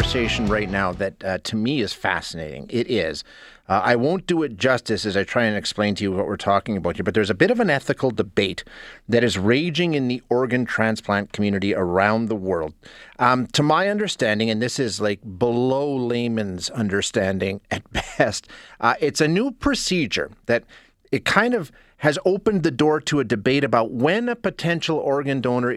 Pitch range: 110-140 Hz